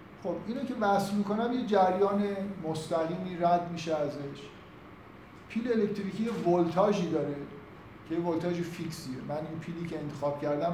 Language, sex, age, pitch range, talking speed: Persian, male, 50-69, 155-195 Hz, 135 wpm